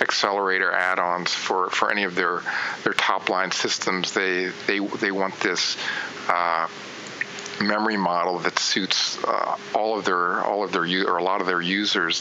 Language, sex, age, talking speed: English, male, 40-59, 165 wpm